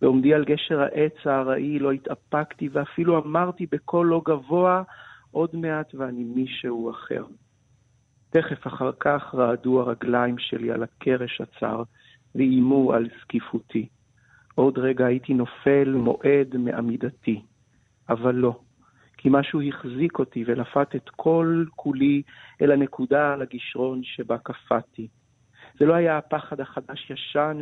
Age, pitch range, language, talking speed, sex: 50-69, 125-145 Hz, Hebrew, 120 wpm, male